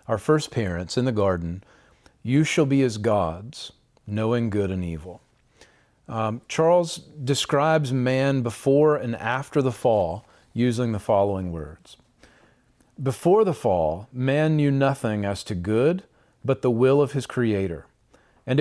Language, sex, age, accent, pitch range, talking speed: English, male, 40-59, American, 110-145 Hz, 140 wpm